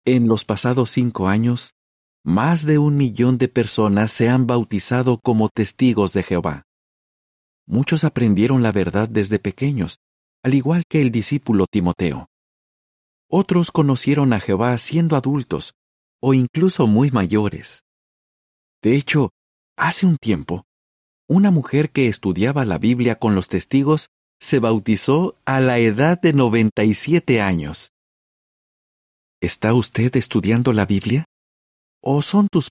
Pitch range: 100-140 Hz